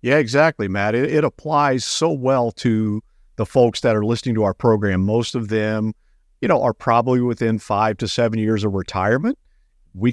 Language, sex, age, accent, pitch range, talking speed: English, male, 50-69, American, 105-125 Hz, 190 wpm